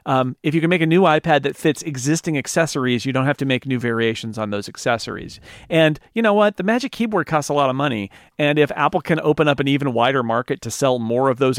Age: 40-59